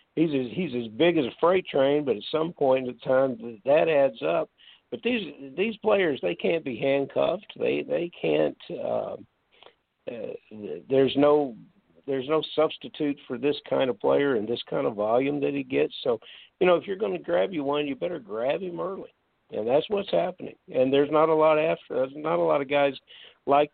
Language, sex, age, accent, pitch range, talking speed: English, male, 50-69, American, 125-155 Hz, 205 wpm